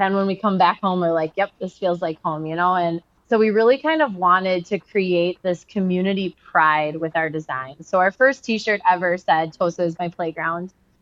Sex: female